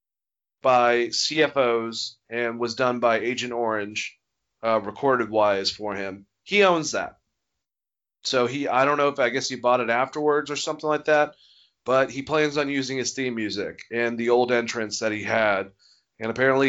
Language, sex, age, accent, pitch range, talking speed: English, male, 30-49, American, 120-145 Hz, 175 wpm